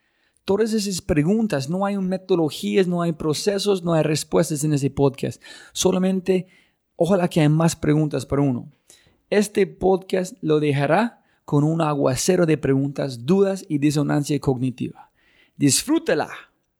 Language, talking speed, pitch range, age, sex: Spanish, 130 wpm, 145-180 Hz, 30-49, male